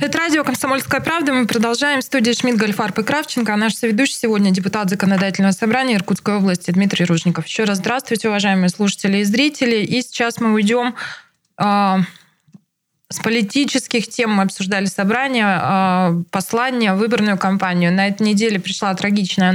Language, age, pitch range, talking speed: Russian, 20-39, 180-220 Hz, 150 wpm